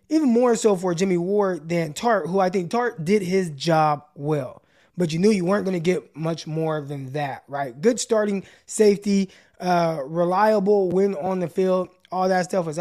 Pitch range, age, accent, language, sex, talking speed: 165-210 Hz, 20-39, American, English, male, 190 wpm